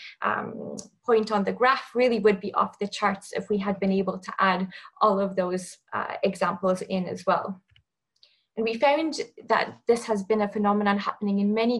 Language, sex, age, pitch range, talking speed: English, female, 20-39, 195-220 Hz, 195 wpm